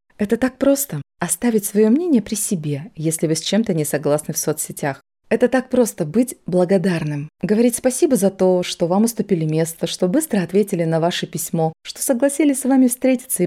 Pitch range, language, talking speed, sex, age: 170-235 Hz, Russian, 180 wpm, female, 20-39